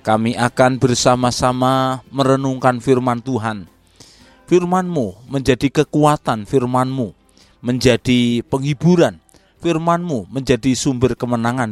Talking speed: 80 wpm